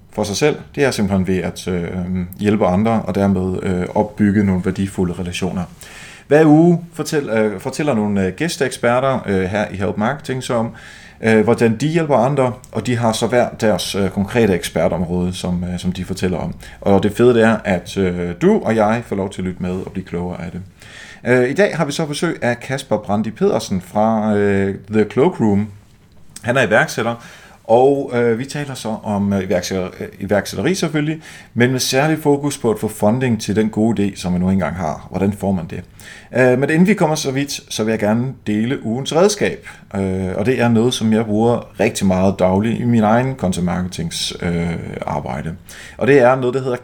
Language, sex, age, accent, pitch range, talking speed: Danish, male, 30-49, native, 95-125 Hz, 205 wpm